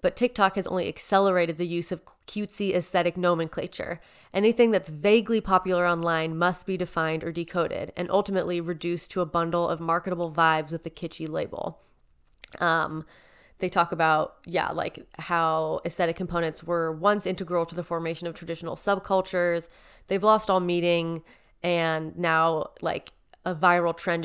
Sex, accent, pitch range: female, American, 165-185 Hz